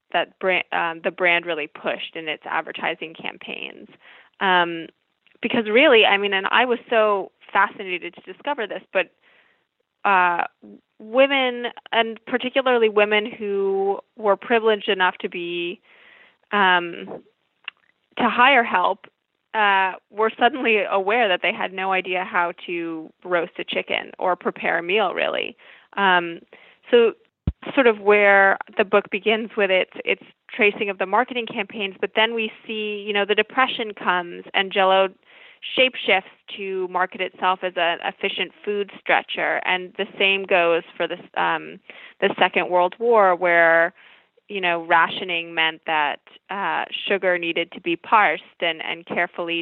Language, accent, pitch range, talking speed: English, American, 180-220 Hz, 145 wpm